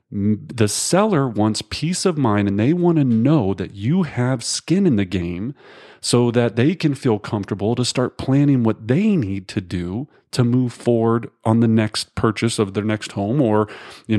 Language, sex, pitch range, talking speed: English, male, 105-145 Hz, 190 wpm